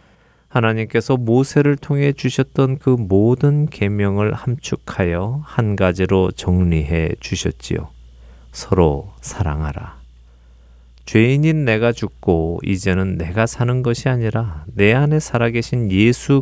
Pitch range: 80-115 Hz